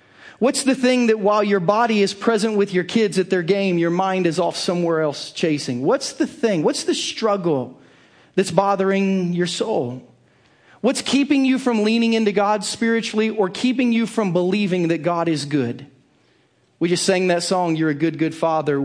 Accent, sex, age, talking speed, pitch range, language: American, male, 40-59, 190 wpm, 155-215 Hz, English